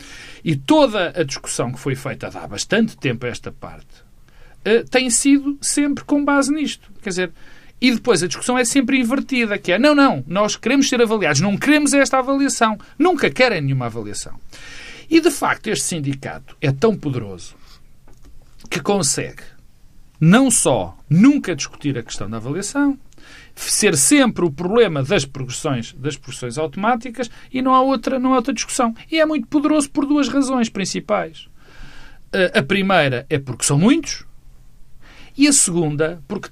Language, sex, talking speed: Portuguese, male, 160 wpm